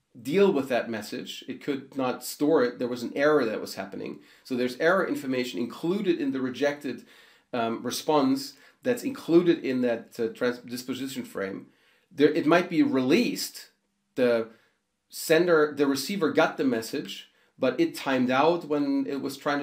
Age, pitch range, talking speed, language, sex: 40-59, 125-165 Hz, 160 wpm, English, male